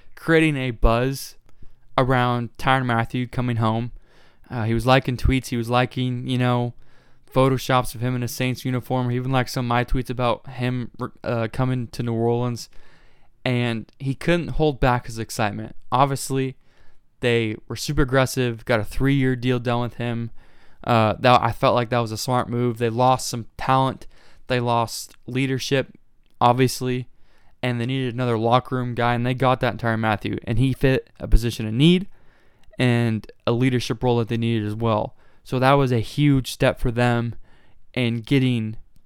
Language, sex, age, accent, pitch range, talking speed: English, male, 20-39, American, 115-130 Hz, 175 wpm